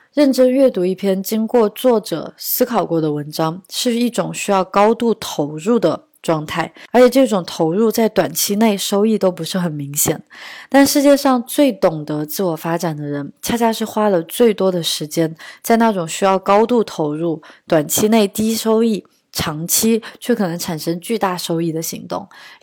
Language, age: Chinese, 20-39